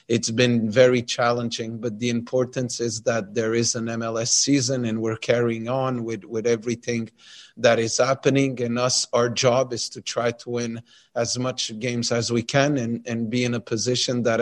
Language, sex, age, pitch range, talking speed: English, male, 30-49, 115-125 Hz, 190 wpm